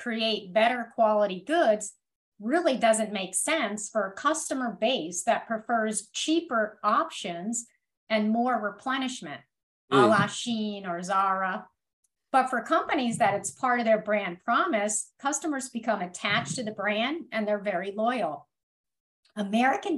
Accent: American